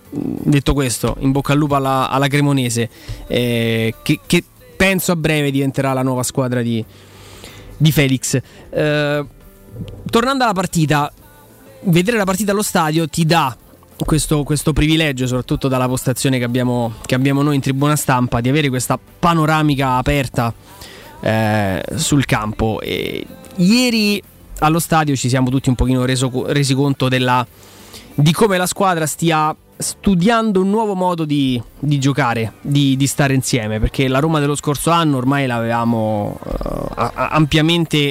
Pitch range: 125-160 Hz